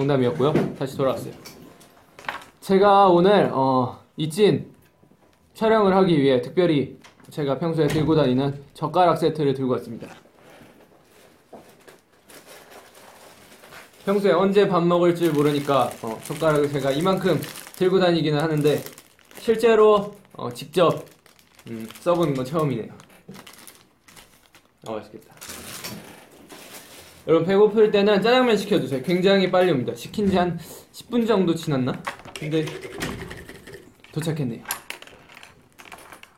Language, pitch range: Korean, 135-190 Hz